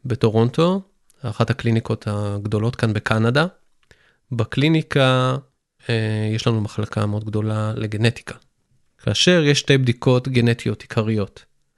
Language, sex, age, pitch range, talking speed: Hebrew, male, 20-39, 110-145 Hz, 95 wpm